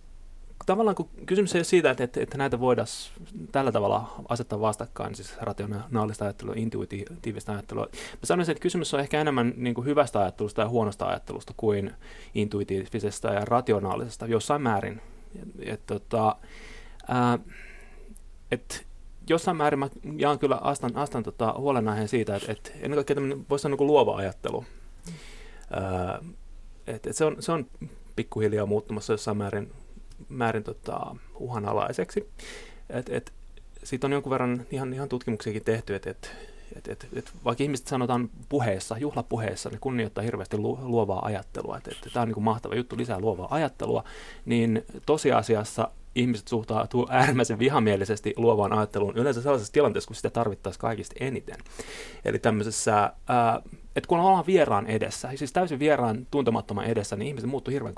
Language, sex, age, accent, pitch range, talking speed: Finnish, male, 30-49, native, 105-140 Hz, 150 wpm